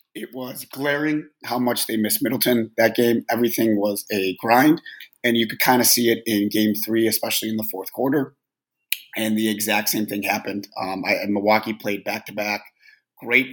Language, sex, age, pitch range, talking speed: English, male, 30-49, 105-135 Hz, 190 wpm